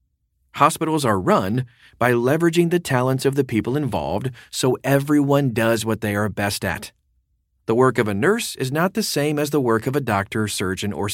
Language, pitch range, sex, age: English, 100-135 Hz, male, 40-59